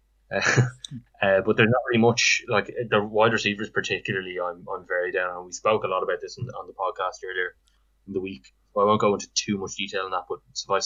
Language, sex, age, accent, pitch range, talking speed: English, male, 20-39, Irish, 90-110 Hz, 230 wpm